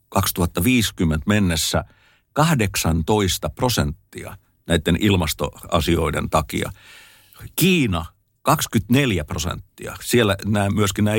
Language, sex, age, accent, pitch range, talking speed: Finnish, male, 50-69, native, 85-115 Hz, 75 wpm